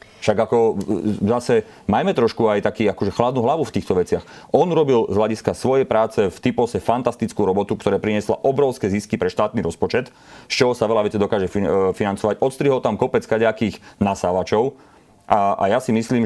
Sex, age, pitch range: male, 30-49, 100-115 Hz